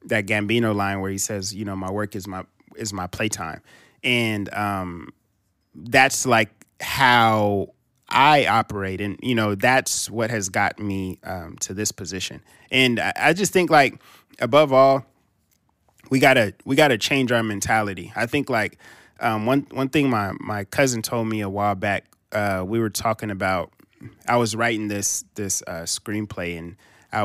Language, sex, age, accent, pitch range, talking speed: English, male, 20-39, American, 100-120 Hz, 170 wpm